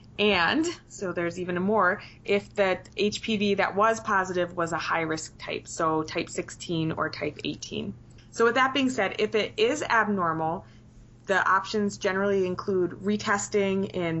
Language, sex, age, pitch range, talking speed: English, female, 20-39, 170-205 Hz, 150 wpm